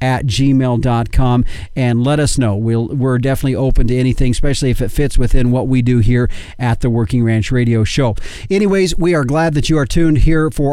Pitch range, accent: 125-155 Hz, American